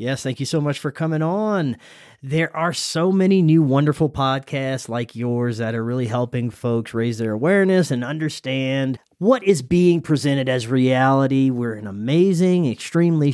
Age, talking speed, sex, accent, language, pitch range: 30-49, 165 wpm, male, American, English, 125-160 Hz